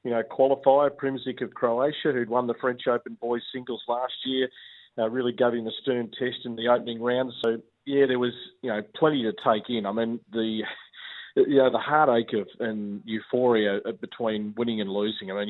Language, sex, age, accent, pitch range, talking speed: English, male, 40-59, Australian, 110-130 Hz, 200 wpm